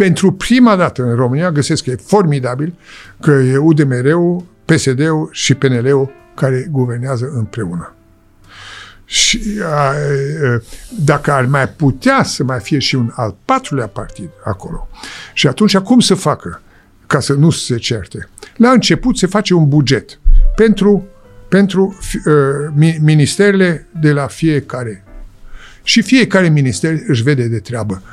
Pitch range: 135-195 Hz